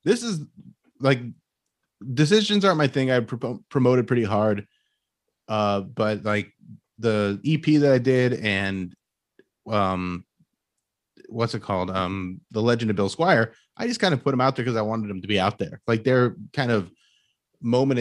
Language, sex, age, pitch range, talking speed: English, male, 30-49, 105-135 Hz, 175 wpm